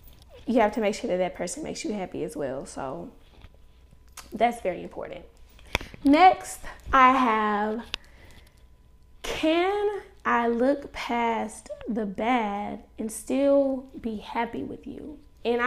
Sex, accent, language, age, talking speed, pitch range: female, American, English, 10-29, 125 wpm, 205-280 Hz